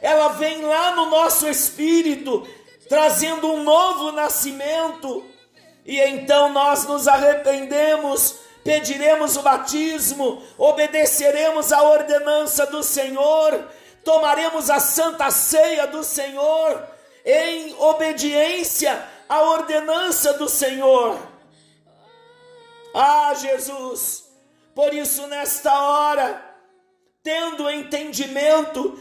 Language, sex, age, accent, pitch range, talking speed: Portuguese, male, 50-69, Brazilian, 270-315 Hz, 90 wpm